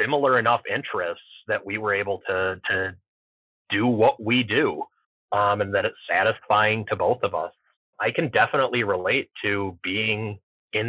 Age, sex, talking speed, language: 30-49, male, 160 wpm, English